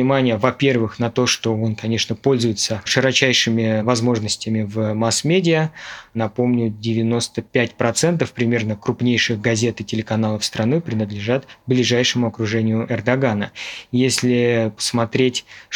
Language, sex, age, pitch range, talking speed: Russian, male, 20-39, 110-125 Hz, 100 wpm